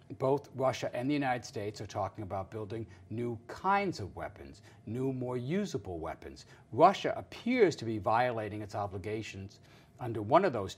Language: English